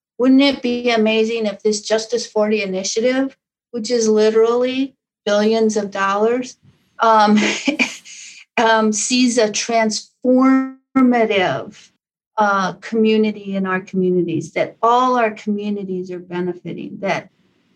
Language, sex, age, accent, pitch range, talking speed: English, female, 50-69, American, 190-230 Hz, 105 wpm